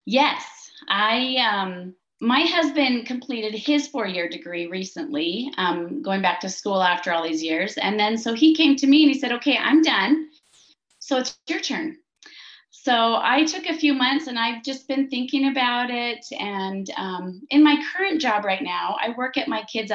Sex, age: female, 30-49